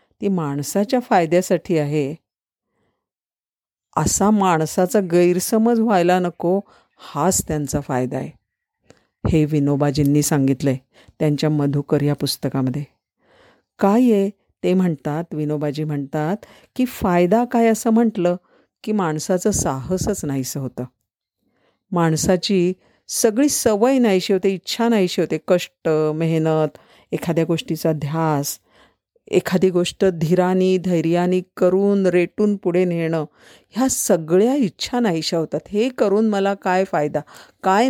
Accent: native